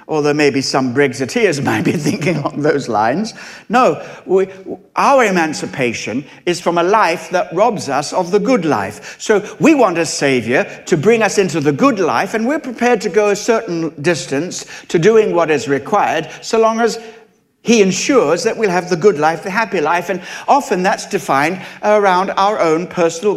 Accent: British